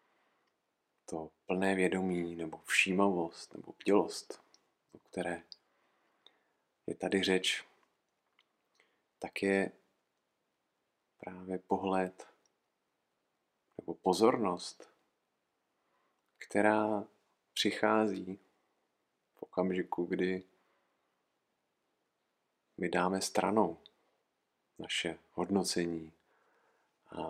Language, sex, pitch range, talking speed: Czech, male, 85-95 Hz, 65 wpm